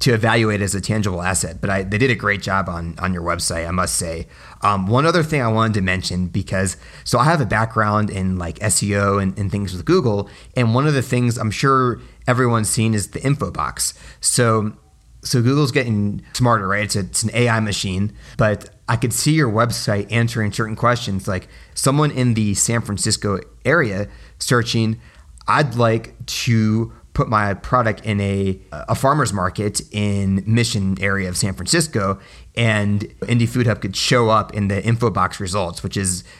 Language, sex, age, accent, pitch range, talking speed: English, male, 30-49, American, 95-115 Hz, 190 wpm